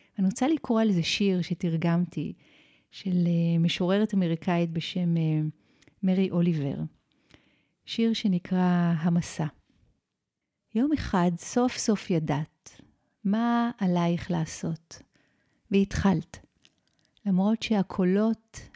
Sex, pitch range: female, 170-210 Hz